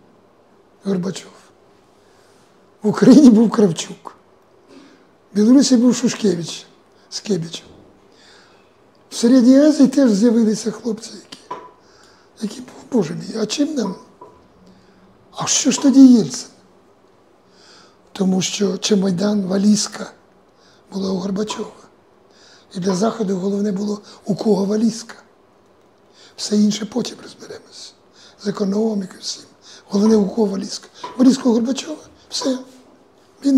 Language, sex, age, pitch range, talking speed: Ukrainian, male, 60-79, 205-240 Hz, 100 wpm